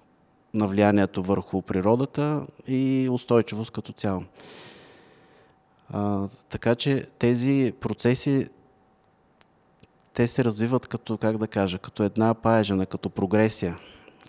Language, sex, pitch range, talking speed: Bulgarian, male, 95-115 Hz, 100 wpm